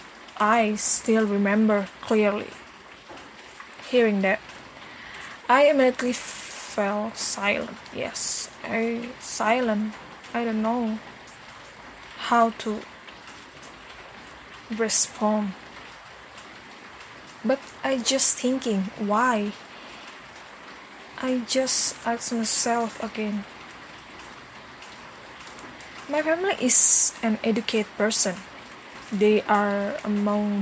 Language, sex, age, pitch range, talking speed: Indonesian, female, 20-39, 210-240 Hz, 75 wpm